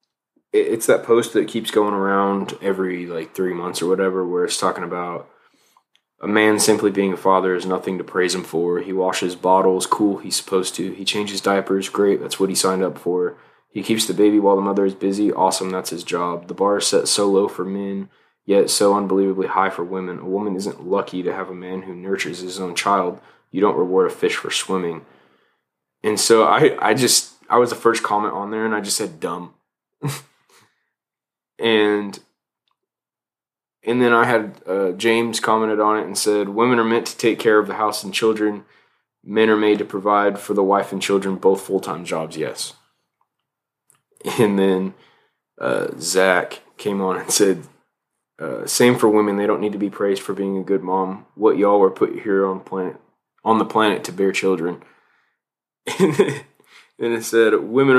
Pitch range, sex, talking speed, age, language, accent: 95-105 Hz, male, 195 wpm, 20-39, English, American